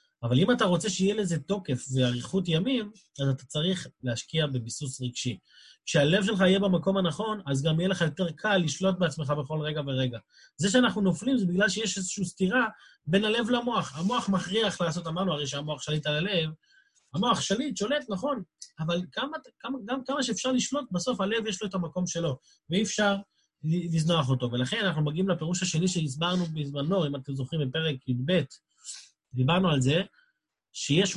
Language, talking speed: Hebrew, 160 wpm